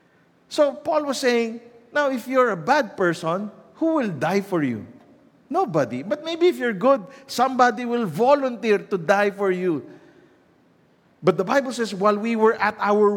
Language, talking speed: English, 170 wpm